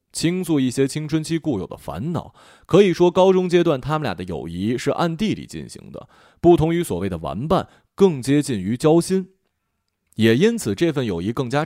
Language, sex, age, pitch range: Chinese, male, 20-39, 105-160 Hz